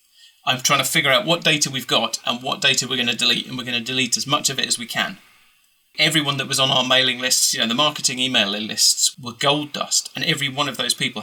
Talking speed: 265 wpm